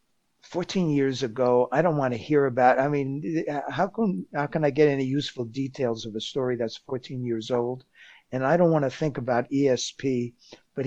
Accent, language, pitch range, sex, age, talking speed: American, English, 130-155 Hz, male, 60-79, 200 wpm